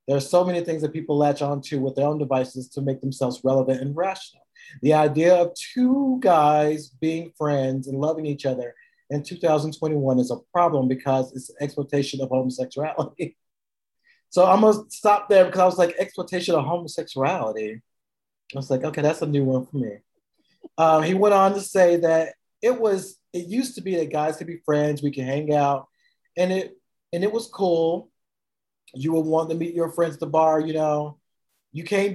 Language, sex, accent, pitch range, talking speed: English, male, American, 145-180 Hz, 195 wpm